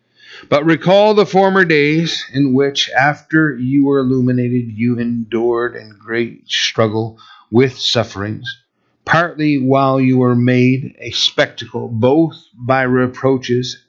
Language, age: English, 50-69